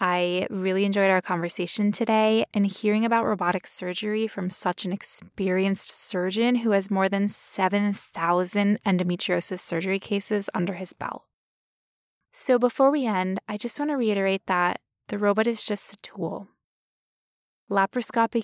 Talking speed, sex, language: 145 wpm, female, English